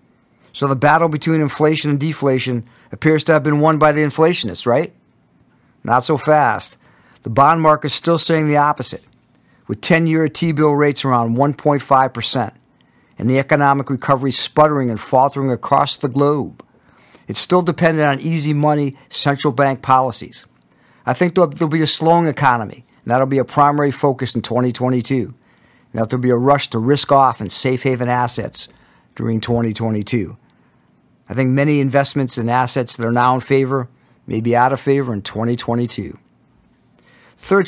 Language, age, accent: English, 50-69, American